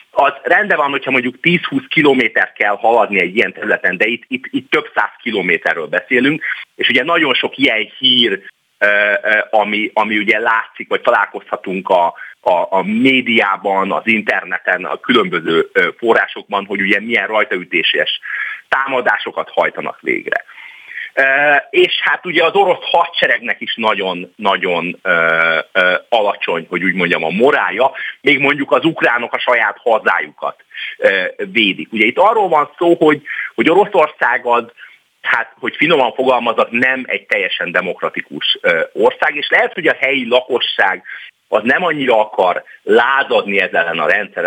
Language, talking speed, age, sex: Hungarian, 145 wpm, 30-49, male